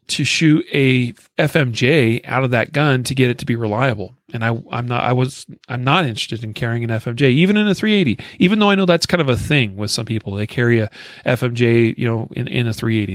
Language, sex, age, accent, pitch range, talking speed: English, male, 40-59, American, 115-145 Hz, 240 wpm